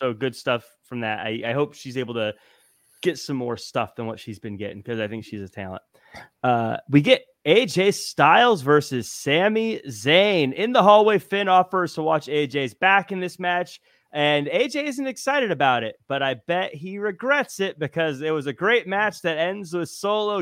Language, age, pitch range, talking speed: English, 30-49, 130-185 Hz, 200 wpm